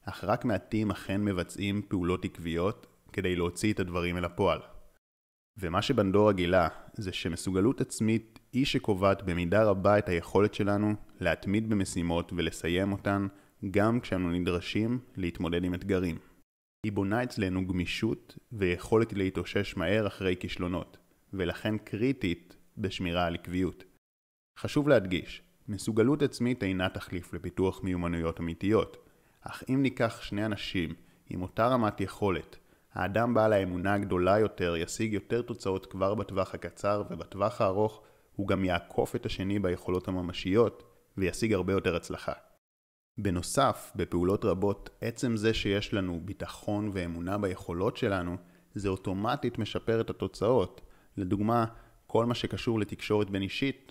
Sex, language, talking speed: male, Hebrew, 130 wpm